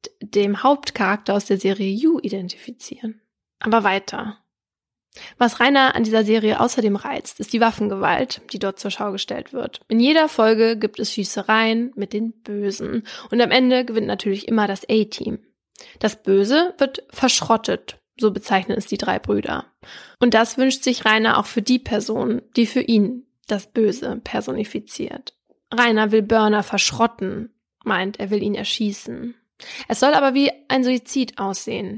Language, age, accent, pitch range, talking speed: German, 20-39, German, 205-245 Hz, 155 wpm